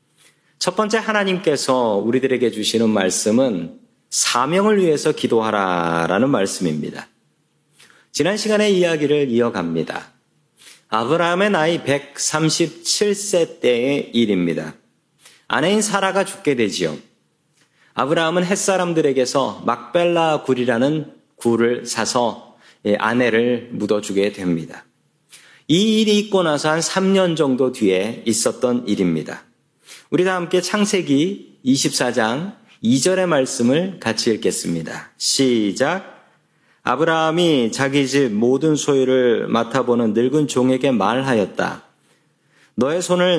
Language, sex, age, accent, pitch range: Korean, male, 40-59, native, 115-170 Hz